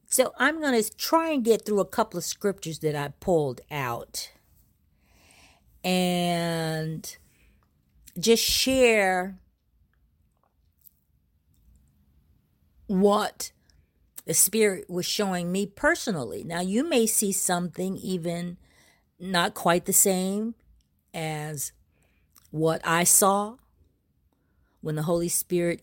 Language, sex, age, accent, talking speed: English, female, 50-69, American, 100 wpm